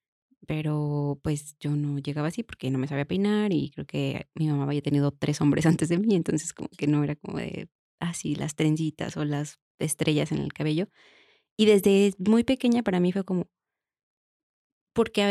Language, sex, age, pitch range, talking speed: Spanish, female, 20-39, 160-205 Hz, 190 wpm